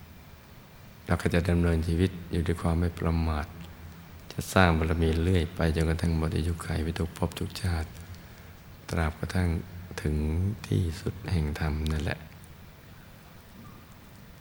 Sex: male